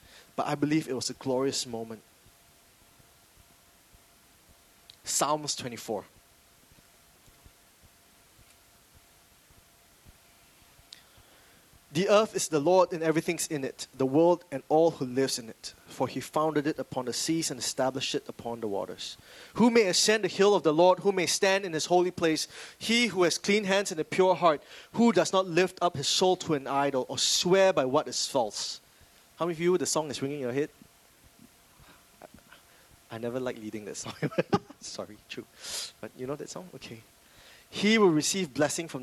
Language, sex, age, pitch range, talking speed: English, male, 20-39, 120-175 Hz, 170 wpm